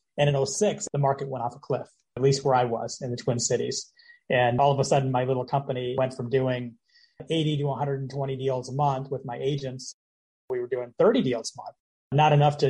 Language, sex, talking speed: English, male, 225 wpm